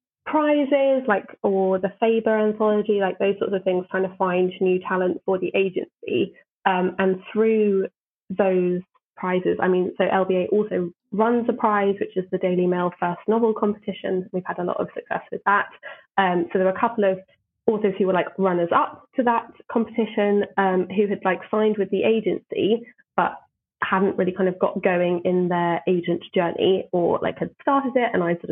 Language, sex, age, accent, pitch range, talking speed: English, female, 20-39, British, 180-230 Hz, 195 wpm